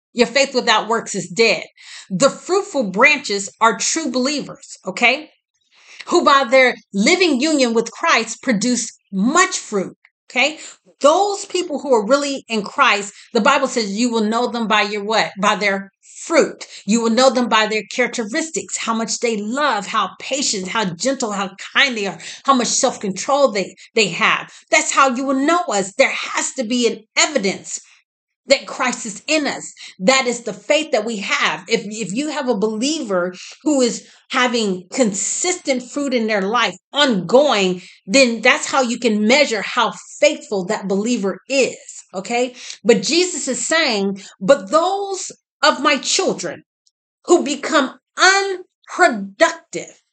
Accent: American